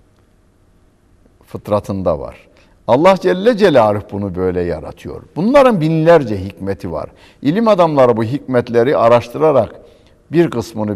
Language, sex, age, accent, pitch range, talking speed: Turkish, male, 60-79, native, 90-115 Hz, 105 wpm